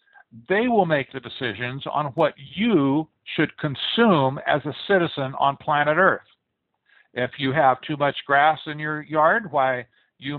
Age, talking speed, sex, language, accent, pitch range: 60-79, 155 wpm, male, English, American, 135-165 Hz